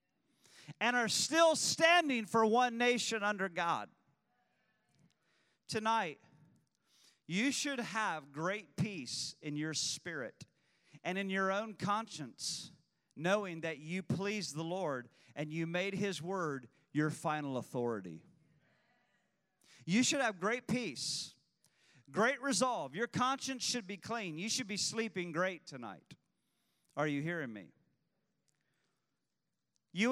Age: 40-59